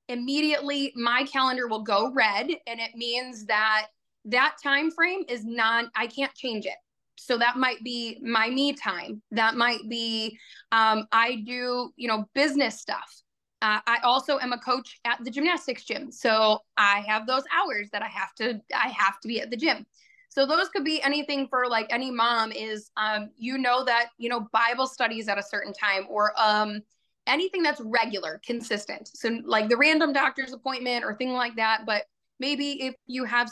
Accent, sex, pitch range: American, female, 220-260 Hz